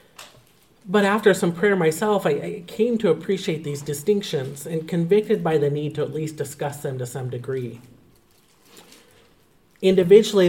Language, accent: English, American